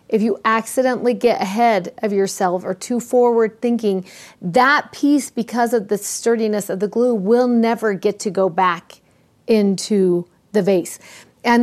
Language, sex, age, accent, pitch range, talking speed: English, female, 40-59, American, 195-240 Hz, 155 wpm